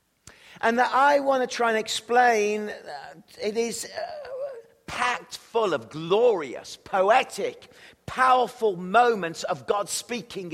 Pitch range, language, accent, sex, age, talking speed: 175-220 Hz, English, British, male, 50-69, 115 wpm